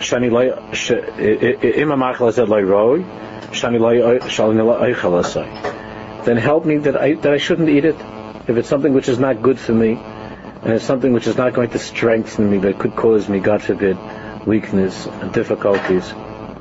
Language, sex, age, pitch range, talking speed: English, male, 50-69, 105-115 Hz, 140 wpm